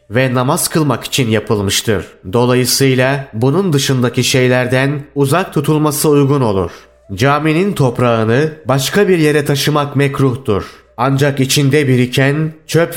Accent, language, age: native, Turkish, 30-49